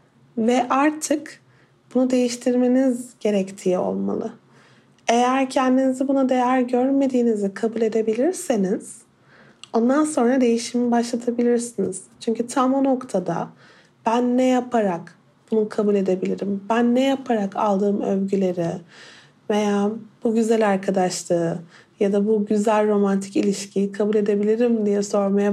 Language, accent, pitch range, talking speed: Turkish, native, 205-250 Hz, 110 wpm